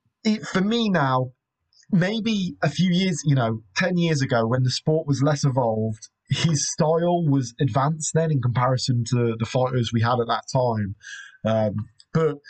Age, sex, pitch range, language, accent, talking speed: 30-49, male, 115-155 Hz, English, British, 170 wpm